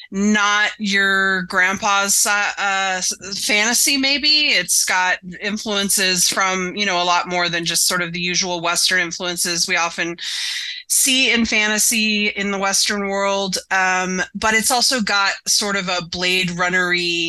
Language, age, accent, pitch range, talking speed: English, 30-49, American, 175-215 Hz, 150 wpm